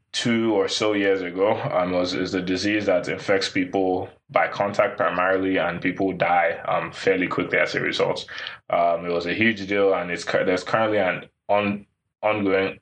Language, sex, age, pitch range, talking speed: English, male, 20-39, 90-105 Hz, 185 wpm